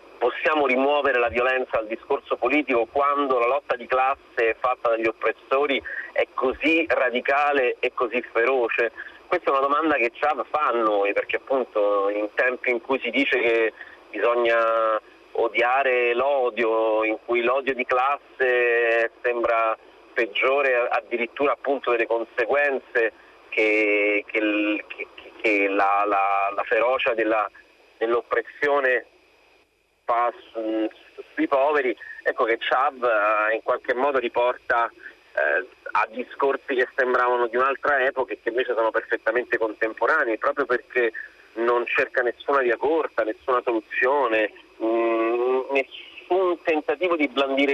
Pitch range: 115-140 Hz